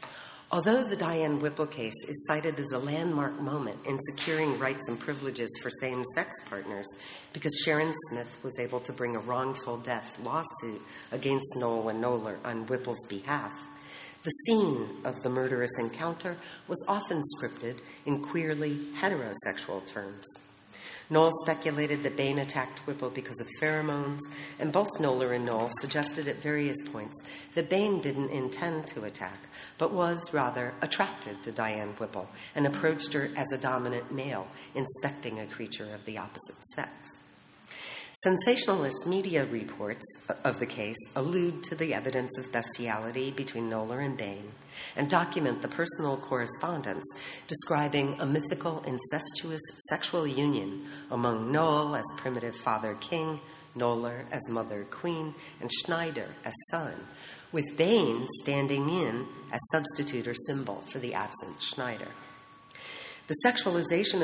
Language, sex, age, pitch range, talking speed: English, female, 50-69, 120-155 Hz, 140 wpm